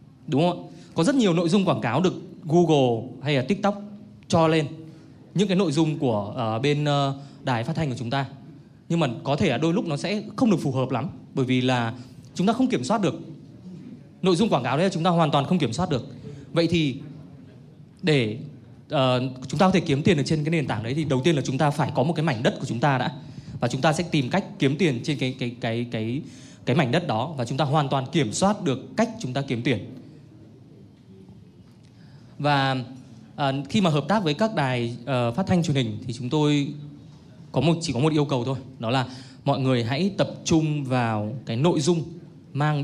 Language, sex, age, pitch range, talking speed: Vietnamese, male, 20-39, 130-160 Hz, 235 wpm